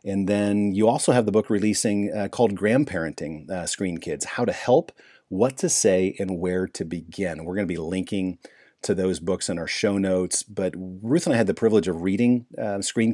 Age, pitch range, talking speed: 40-59, 90-105 Hz, 215 wpm